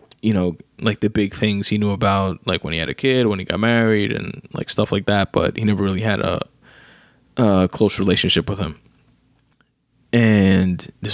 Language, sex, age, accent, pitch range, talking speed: English, male, 20-39, American, 95-110 Hz, 200 wpm